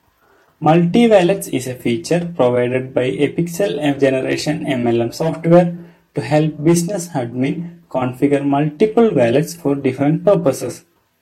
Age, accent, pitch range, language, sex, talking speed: 30-49, Indian, 135-170 Hz, English, male, 110 wpm